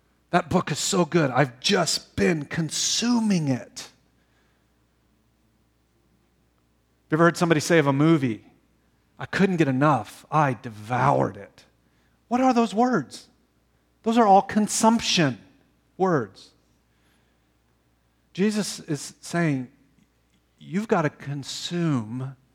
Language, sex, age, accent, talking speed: English, male, 40-59, American, 110 wpm